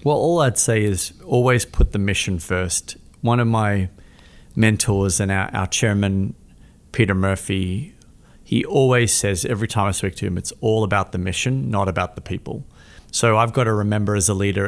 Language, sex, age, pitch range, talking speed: English, male, 30-49, 95-110 Hz, 190 wpm